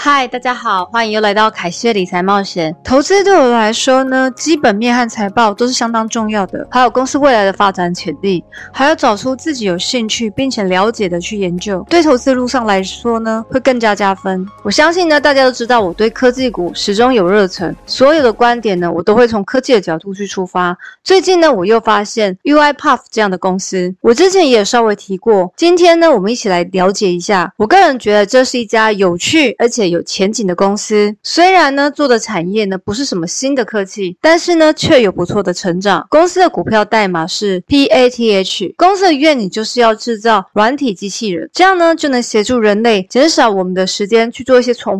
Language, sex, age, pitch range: Chinese, female, 30-49, 195-270 Hz